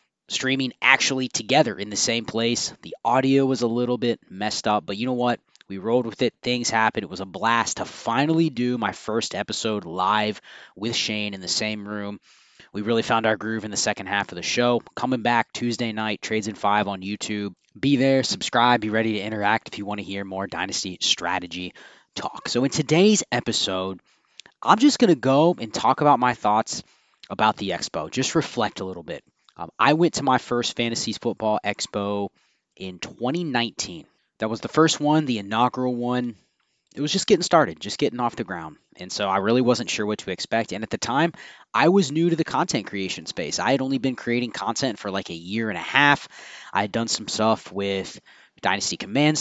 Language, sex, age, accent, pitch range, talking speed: English, male, 20-39, American, 105-130 Hz, 210 wpm